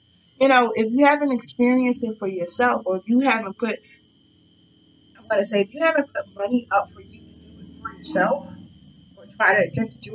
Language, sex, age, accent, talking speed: English, female, 20-39, American, 215 wpm